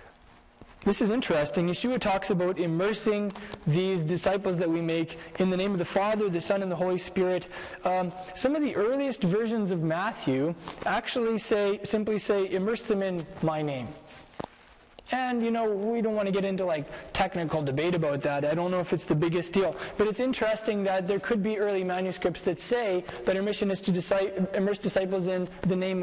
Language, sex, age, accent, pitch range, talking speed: English, male, 20-39, American, 170-210 Hz, 195 wpm